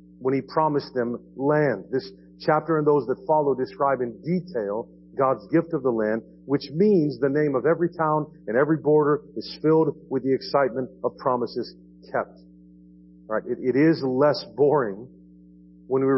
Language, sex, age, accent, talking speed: English, male, 50-69, American, 170 wpm